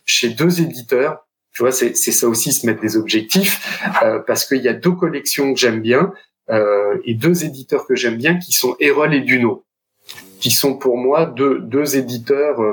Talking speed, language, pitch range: 200 wpm, French, 120-175 Hz